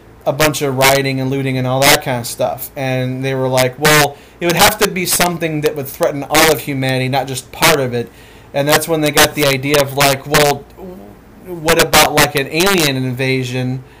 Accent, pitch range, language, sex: American, 135-185 Hz, English, male